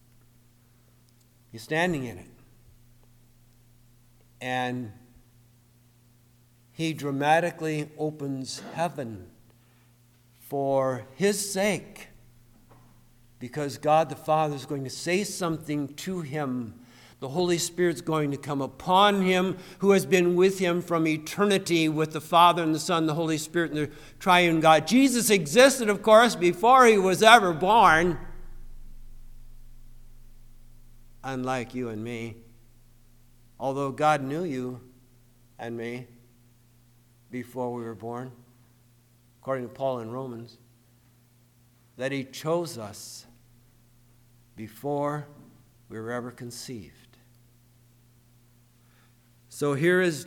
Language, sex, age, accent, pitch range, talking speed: English, male, 60-79, American, 120-155 Hz, 110 wpm